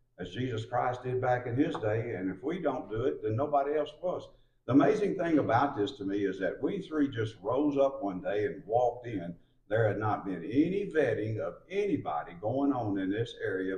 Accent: American